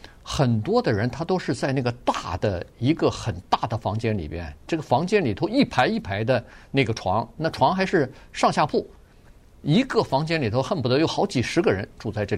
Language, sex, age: Chinese, male, 50-69